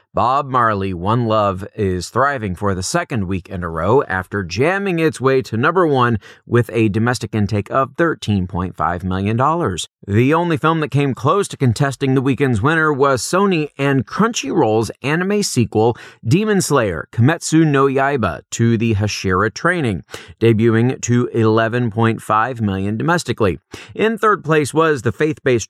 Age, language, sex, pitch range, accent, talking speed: 30-49, English, male, 105-150 Hz, American, 150 wpm